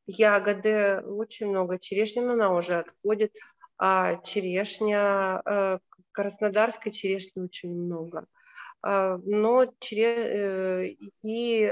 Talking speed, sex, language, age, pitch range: 85 wpm, female, Russian, 30-49, 185-230 Hz